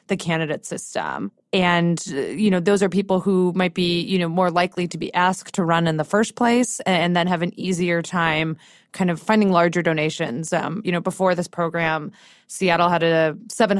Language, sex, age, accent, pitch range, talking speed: English, female, 20-39, American, 165-200 Hz, 200 wpm